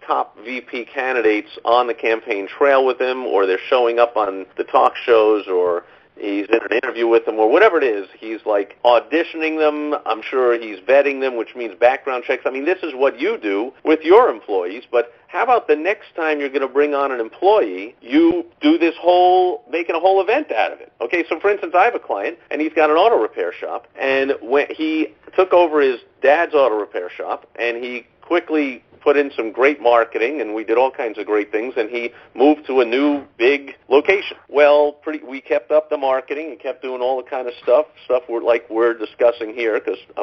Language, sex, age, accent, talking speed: English, male, 40-59, American, 215 wpm